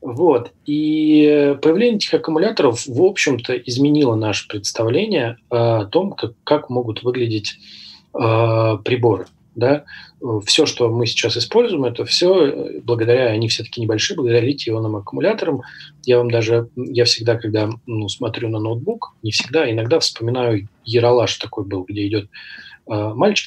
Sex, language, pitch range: male, English, 110-135 Hz